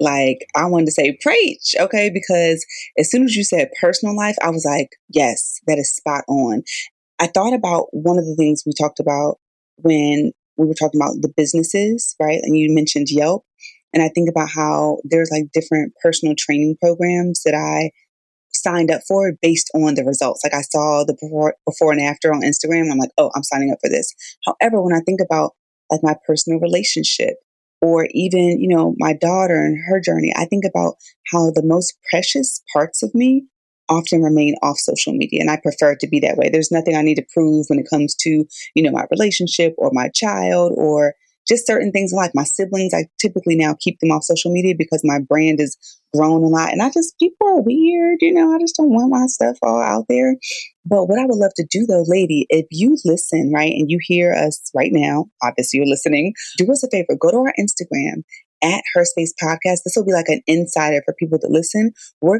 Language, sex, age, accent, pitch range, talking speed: English, female, 20-39, American, 155-195 Hz, 215 wpm